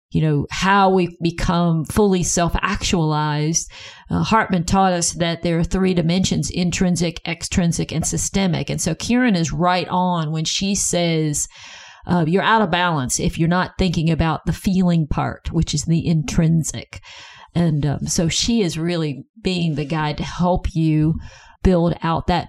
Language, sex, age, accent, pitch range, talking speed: English, female, 50-69, American, 160-190 Hz, 160 wpm